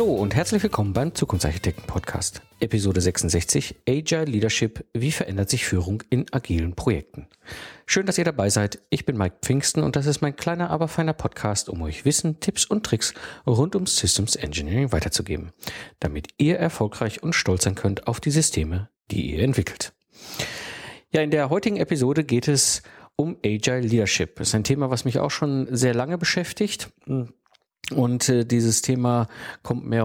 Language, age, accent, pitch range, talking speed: German, 50-69, German, 110-140 Hz, 170 wpm